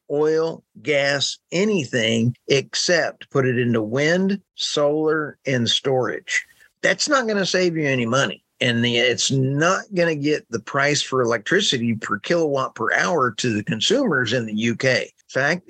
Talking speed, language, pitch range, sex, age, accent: 155 wpm, English, 120-165 Hz, male, 50-69, American